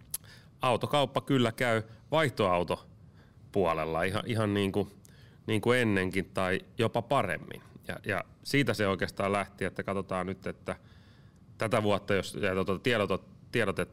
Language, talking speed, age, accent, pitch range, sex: Finnish, 135 wpm, 30-49, native, 95-110 Hz, male